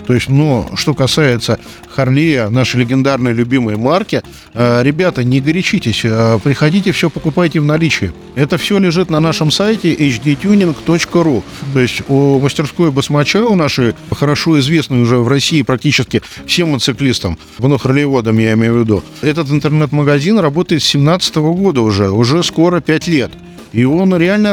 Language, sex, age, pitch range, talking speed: Russian, male, 50-69, 130-170 Hz, 145 wpm